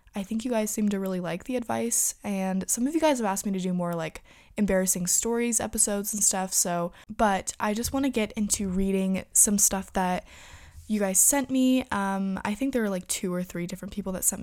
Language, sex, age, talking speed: English, female, 20-39, 235 wpm